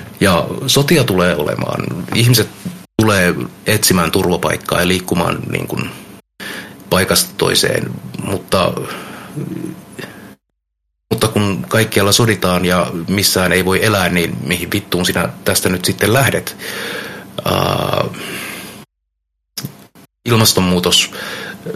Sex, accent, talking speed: male, native, 85 wpm